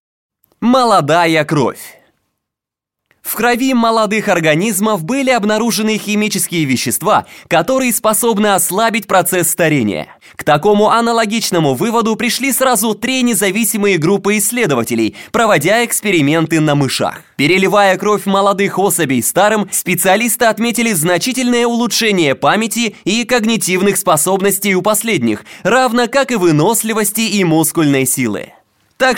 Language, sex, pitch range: Russian, male, 180-225 Hz